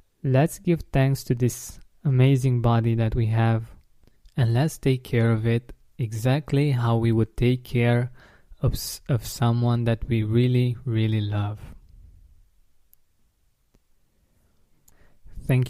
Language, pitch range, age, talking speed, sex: English, 115-130 Hz, 20-39, 120 wpm, male